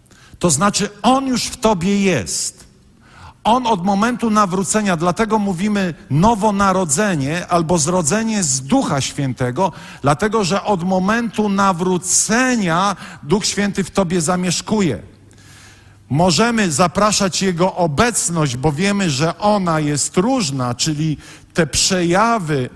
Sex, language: male, Polish